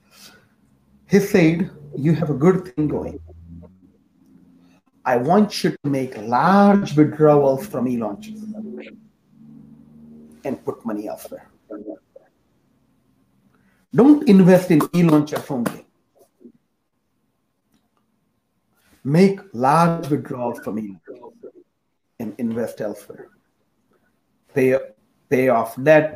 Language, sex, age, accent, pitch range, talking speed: English, male, 50-69, Indian, 125-200 Hz, 90 wpm